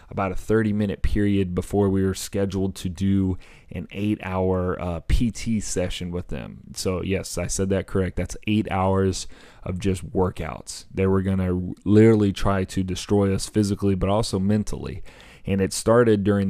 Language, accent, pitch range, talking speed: English, American, 90-100 Hz, 170 wpm